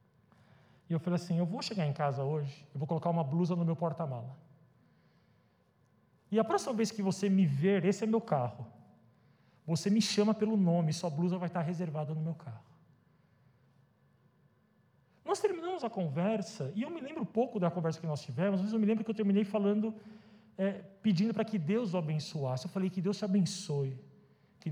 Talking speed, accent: 190 wpm, Brazilian